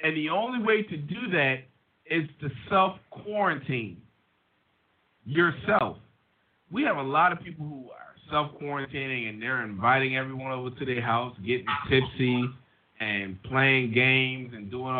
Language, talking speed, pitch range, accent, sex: English, 140 wpm, 115-165 Hz, American, male